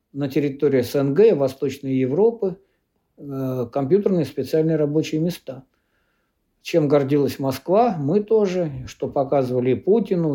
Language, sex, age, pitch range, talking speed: Russian, male, 60-79, 135-185 Hz, 105 wpm